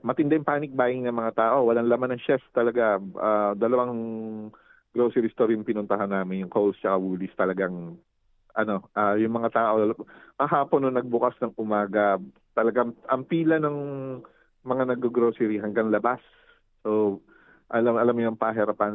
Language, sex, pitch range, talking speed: Filipino, male, 95-120 Hz, 150 wpm